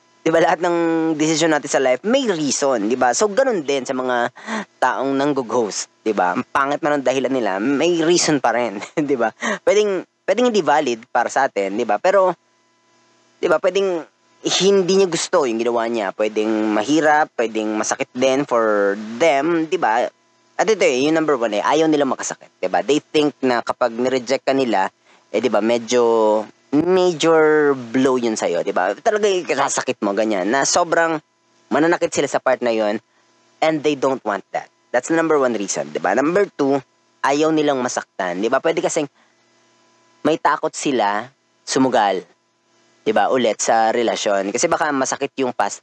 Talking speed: 175 wpm